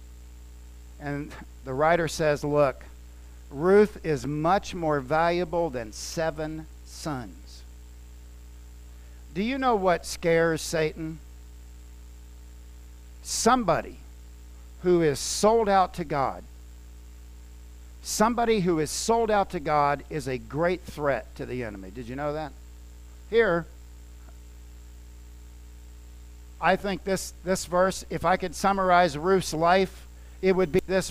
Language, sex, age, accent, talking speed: English, male, 50-69, American, 115 wpm